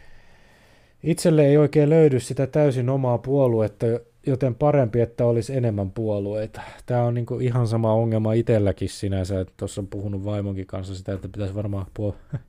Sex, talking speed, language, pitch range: male, 155 wpm, Finnish, 95-115 Hz